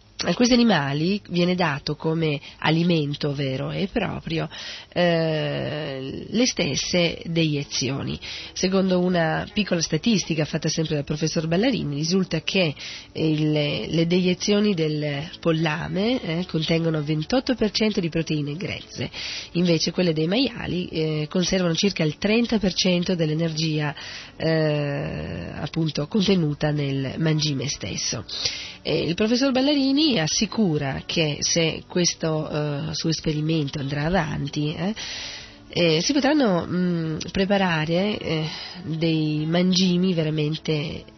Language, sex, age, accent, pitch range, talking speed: Italian, female, 40-59, native, 150-180 Hz, 100 wpm